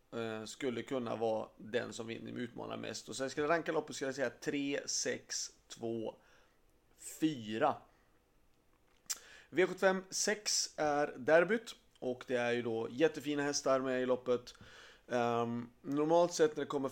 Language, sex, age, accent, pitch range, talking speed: Swedish, male, 30-49, native, 115-140 Hz, 140 wpm